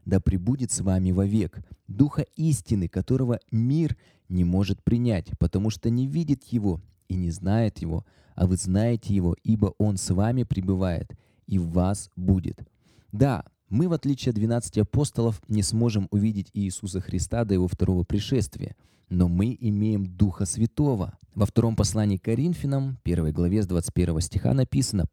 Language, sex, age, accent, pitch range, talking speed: Russian, male, 20-39, native, 95-120 Hz, 160 wpm